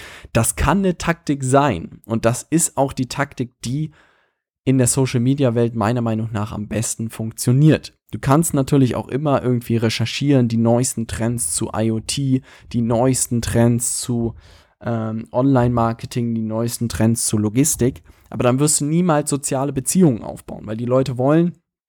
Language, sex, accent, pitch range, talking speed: German, male, German, 110-130 Hz, 155 wpm